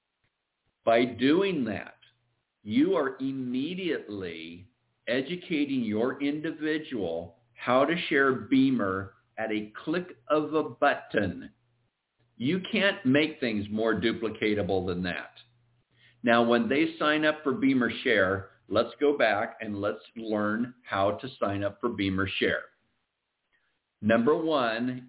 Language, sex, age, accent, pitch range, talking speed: English, male, 50-69, American, 105-140 Hz, 120 wpm